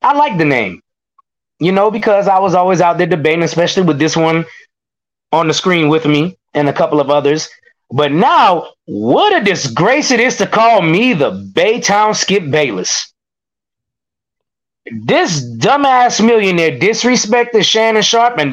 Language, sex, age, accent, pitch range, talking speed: English, male, 20-39, American, 145-215 Hz, 155 wpm